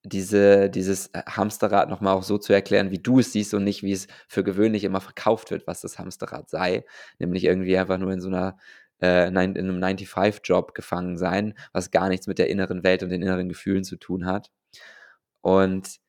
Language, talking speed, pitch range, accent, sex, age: English, 205 wpm, 95-110 Hz, German, male, 20-39